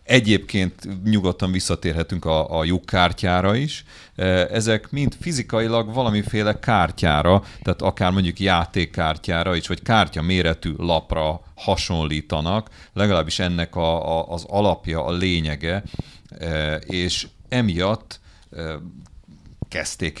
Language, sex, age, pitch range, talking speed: Hungarian, male, 40-59, 80-100 Hz, 100 wpm